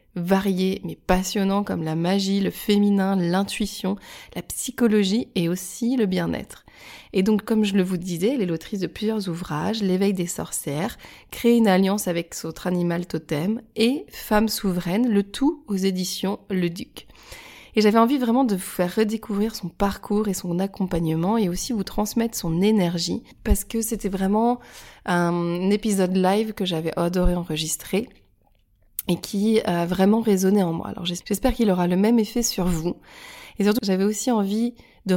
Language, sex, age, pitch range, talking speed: French, female, 20-39, 175-215 Hz, 170 wpm